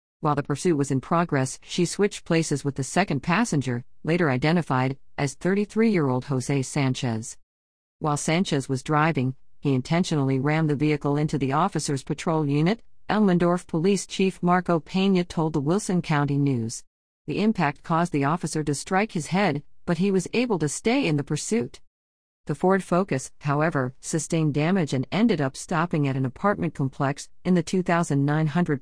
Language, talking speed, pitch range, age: English, 160 wpm, 135-175 Hz, 50-69